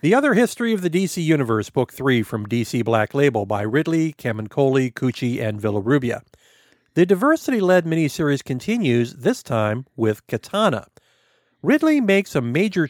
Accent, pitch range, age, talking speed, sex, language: American, 125-180 Hz, 50-69, 145 wpm, male, English